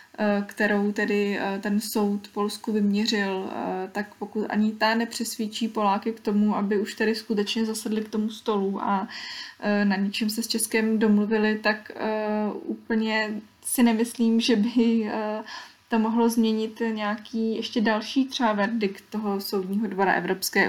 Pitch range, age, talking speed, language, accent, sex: 205-225 Hz, 20-39, 135 wpm, Czech, native, female